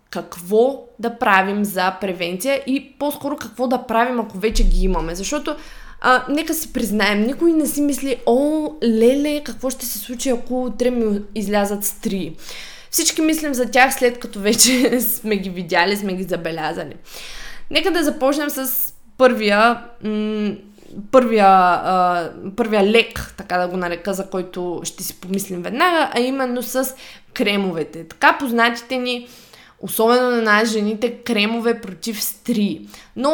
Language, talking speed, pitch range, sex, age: Bulgarian, 145 wpm, 195-255 Hz, female, 20-39